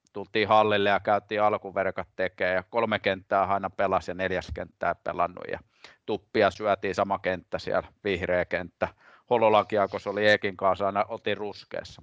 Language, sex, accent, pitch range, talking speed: Finnish, male, native, 105-170 Hz, 150 wpm